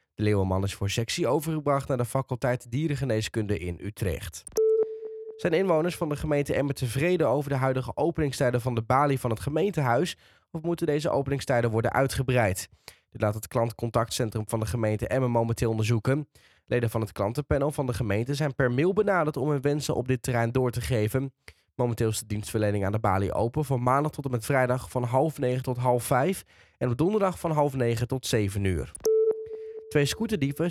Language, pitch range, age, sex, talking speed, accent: Dutch, 115-150 Hz, 10-29, male, 190 wpm, Dutch